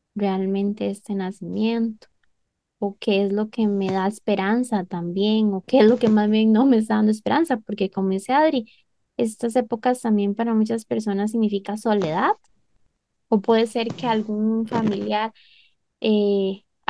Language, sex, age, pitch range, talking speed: Spanish, female, 10-29, 210-255 Hz, 155 wpm